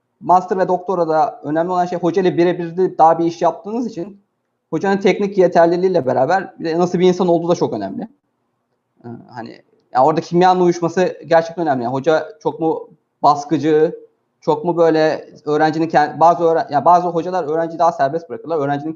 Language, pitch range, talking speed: Turkish, 145-185 Hz, 170 wpm